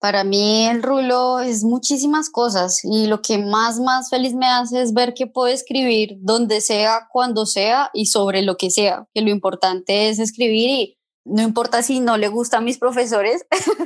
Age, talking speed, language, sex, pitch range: 20-39, 190 wpm, Spanish, male, 205-245 Hz